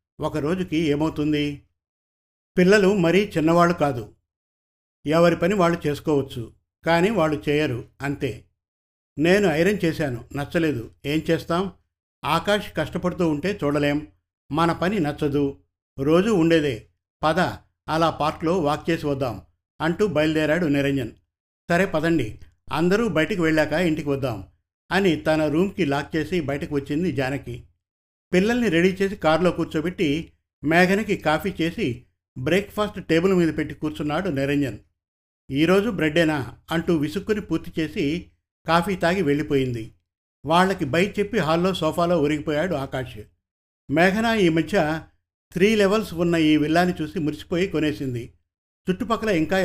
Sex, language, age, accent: male, Telugu, 50-69, native